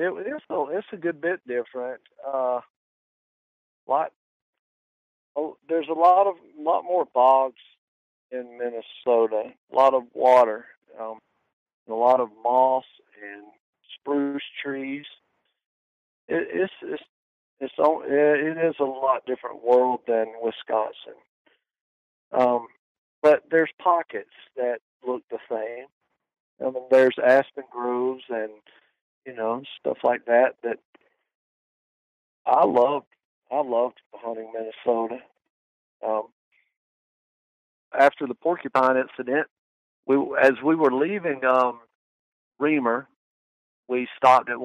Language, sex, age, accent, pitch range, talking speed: English, male, 50-69, American, 115-135 Hz, 120 wpm